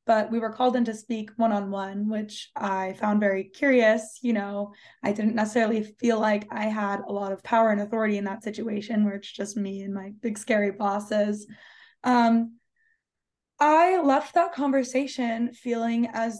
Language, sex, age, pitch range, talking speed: English, female, 20-39, 210-245 Hz, 170 wpm